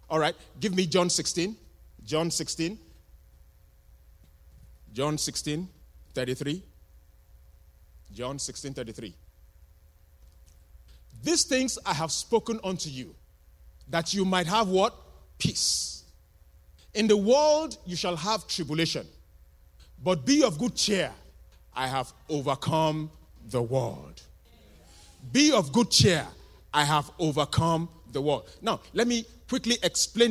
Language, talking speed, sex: English, 115 wpm, male